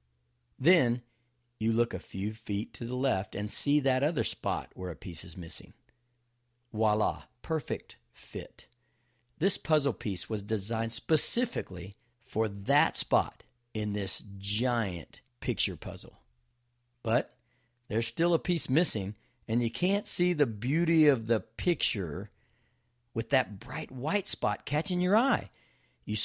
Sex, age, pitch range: male, 50-69, 105-130 Hz